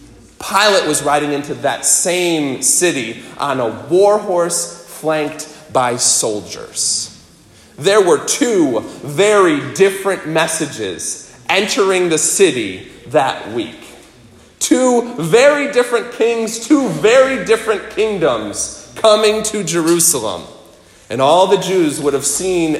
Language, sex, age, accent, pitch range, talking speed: English, male, 40-59, American, 155-230 Hz, 110 wpm